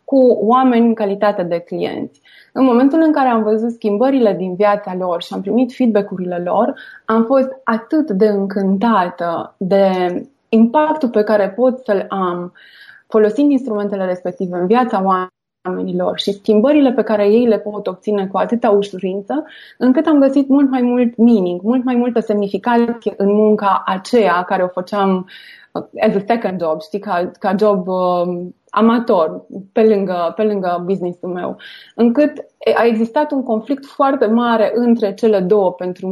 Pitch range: 190-235 Hz